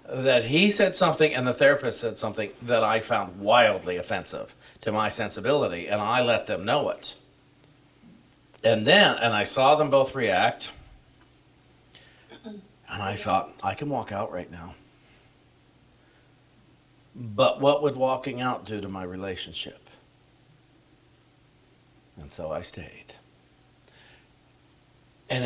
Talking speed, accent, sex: 125 wpm, American, male